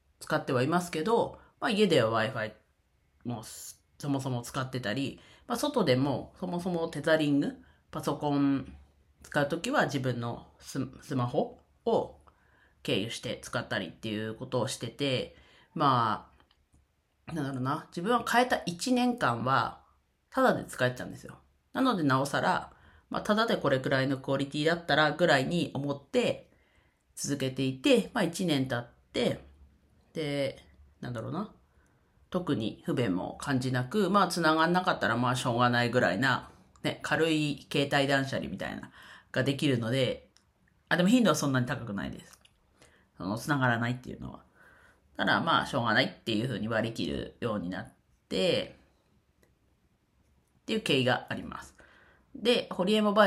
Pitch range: 120-170 Hz